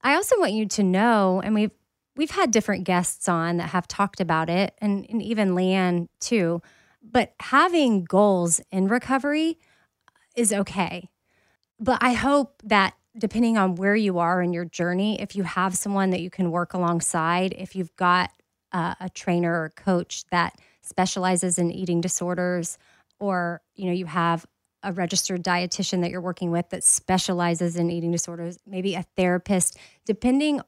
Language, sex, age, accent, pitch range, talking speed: English, female, 30-49, American, 175-215 Hz, 165 wpm